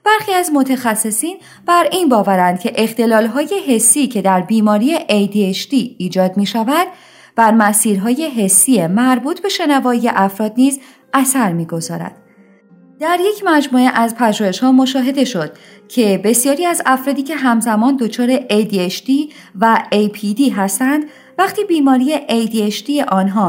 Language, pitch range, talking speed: Persian, 200-295 Hz, 130 wpm